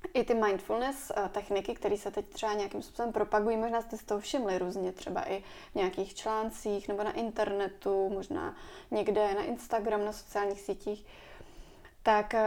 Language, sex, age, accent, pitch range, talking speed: Czech, female, 20-39, native, 200-225 Hz, 160 wpm